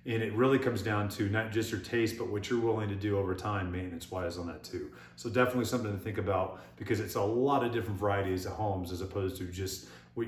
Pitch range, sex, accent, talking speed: 90-110 Hz, male, American, 250 wpm